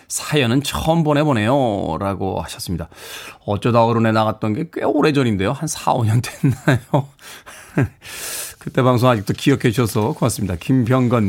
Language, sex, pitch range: Korean, male, 110-155 Hz